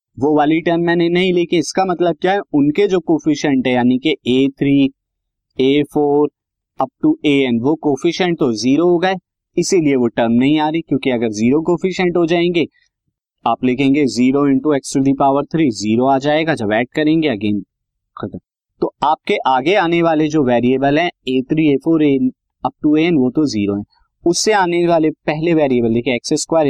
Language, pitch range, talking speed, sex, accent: Hindi, 125-160 Hz, 180 wpm, male, native